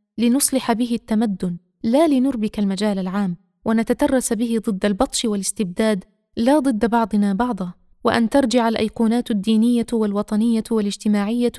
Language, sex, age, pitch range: Arabic, female, 20-39, 210-250 Hz